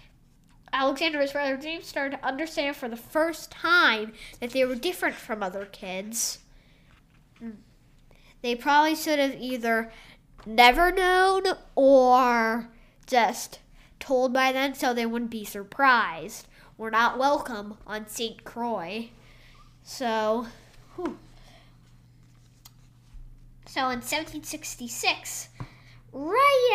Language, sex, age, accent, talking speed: English, female, 10-29, American, 105 wpm